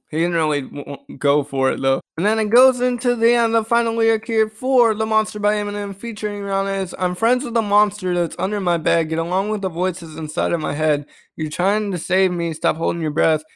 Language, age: English, 20-39